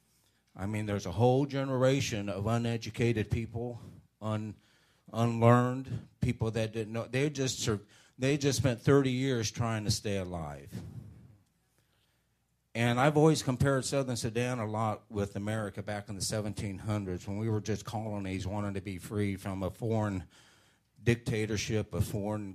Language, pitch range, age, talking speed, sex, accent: English, 100-120 Hz, 40-59, 145 wpm, male, American